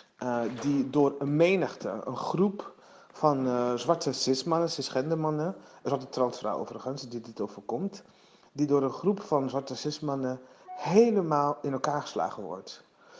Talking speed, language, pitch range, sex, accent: 160 wpm, Dutch, 135-175 Hz, male, Dutch